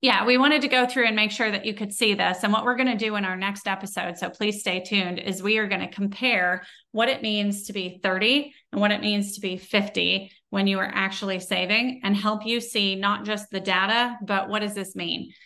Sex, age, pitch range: female, 30-49, 190-220 Hz